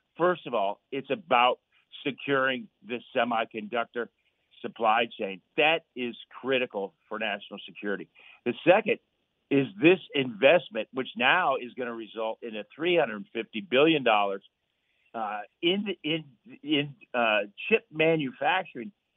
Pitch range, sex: 110-135 Hz, male